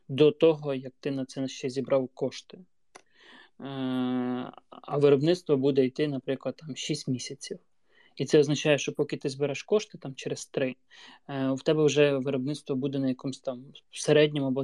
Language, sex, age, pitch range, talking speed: Ukrainian, male, 20-39, 135-155 Hz, 155 wpm